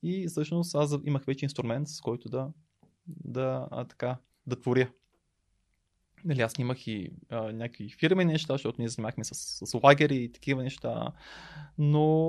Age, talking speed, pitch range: 20-39, 155 wpm, 125-160 Hz